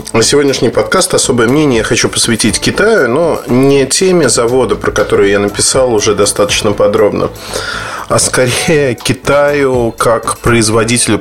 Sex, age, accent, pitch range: male, 20-39, native, 105-140 Hz